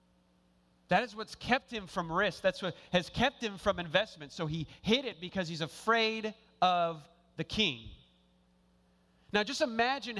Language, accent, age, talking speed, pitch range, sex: English, American, 30-49, 160 wpm, 145-240 Hz, male